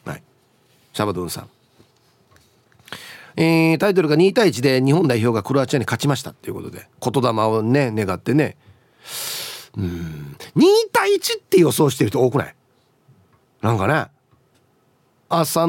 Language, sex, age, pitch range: Japanese, male, 40-59, 120-170 Hz